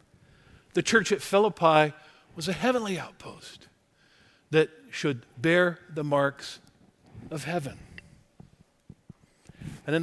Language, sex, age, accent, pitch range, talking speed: English, male, 50-69, American, 155-230 Hz, 100 wpm